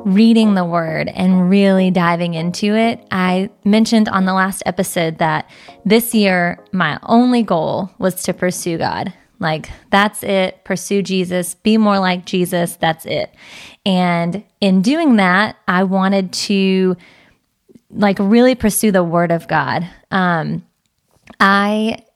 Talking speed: 140 wpm